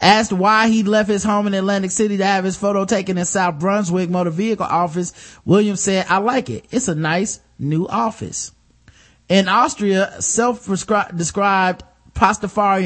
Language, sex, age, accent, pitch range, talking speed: English, male, 20-39, American, 155-210 Hz, 160 wpm